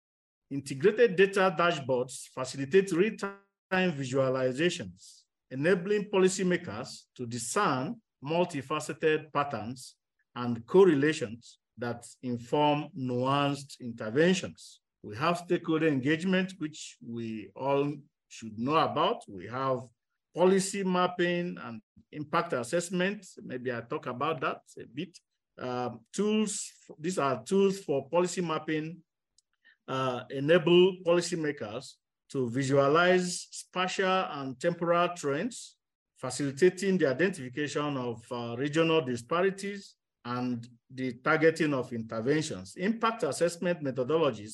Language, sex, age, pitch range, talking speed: English, male, 50-69, 125-175 Hz, 100 wpm